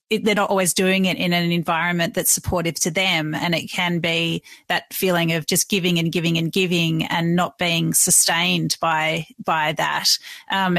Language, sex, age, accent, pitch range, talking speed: English, female, 30-49, Australian, 170-200 Hz, 190 wpm